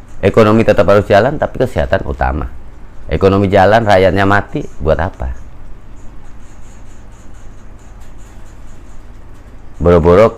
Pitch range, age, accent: 80-110 Hz, 40-59, native